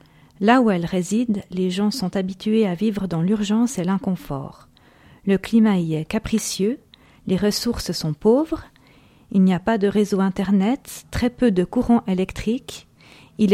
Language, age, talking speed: French, 40-59, 160 wpm